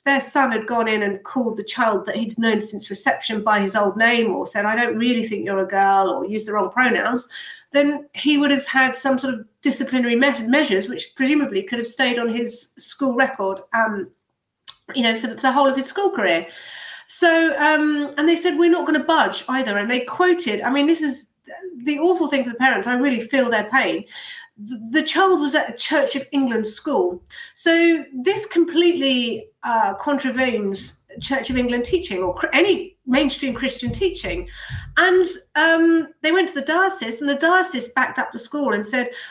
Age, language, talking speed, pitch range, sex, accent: 30-49, English, 200 wpm, 230-305 Hz, female, British